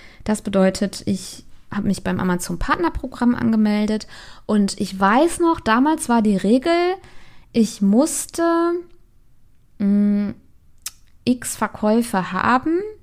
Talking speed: 105 wpm